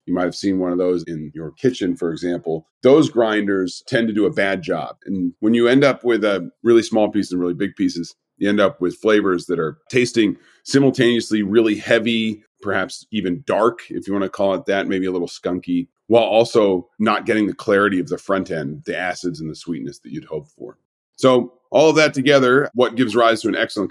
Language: English